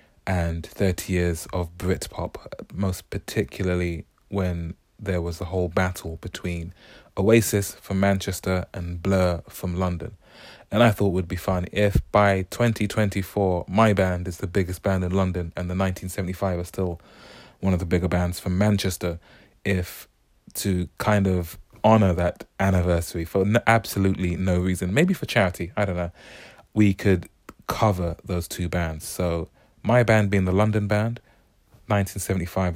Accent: British